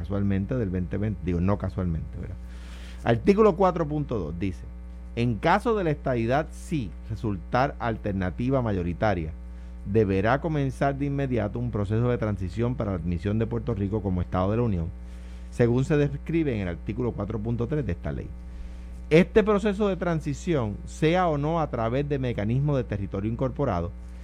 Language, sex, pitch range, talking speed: Spanish, male, 90-150 Hz, 155 wpm